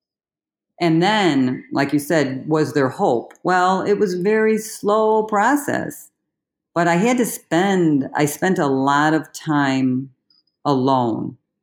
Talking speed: 140 wpm